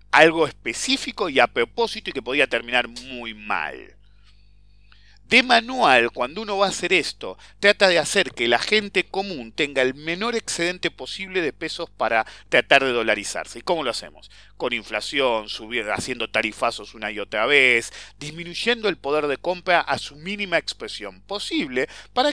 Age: 40-59